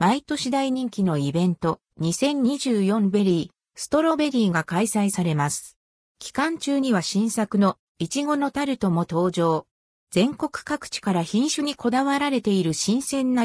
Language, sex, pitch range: Japanese, female, 180-260 Hz